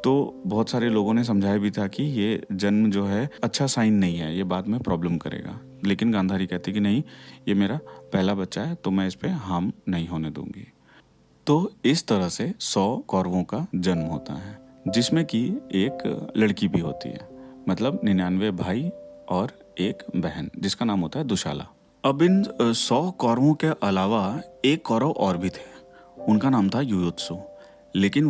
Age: 40-59